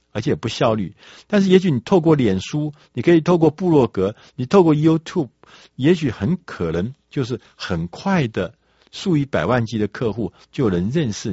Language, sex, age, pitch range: Chinese, male, 50-69, 105-160 Hz